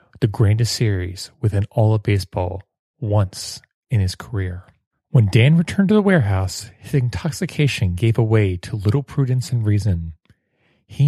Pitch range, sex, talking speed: 100-130 Hz, male, 145 wpm